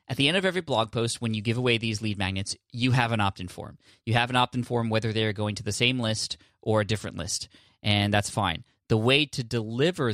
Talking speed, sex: 250 wpm, male